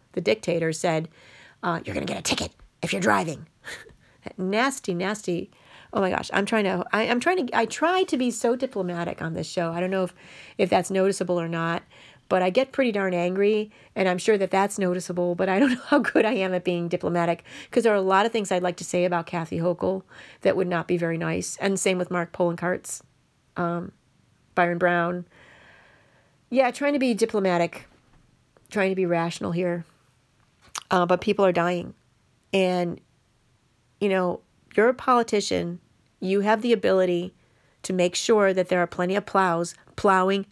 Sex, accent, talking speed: female, American, 190 wpm